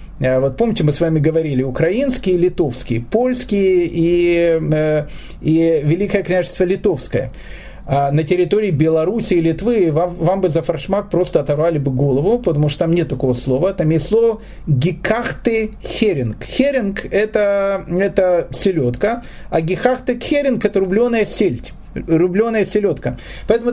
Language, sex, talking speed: Russian, male, 135 wpm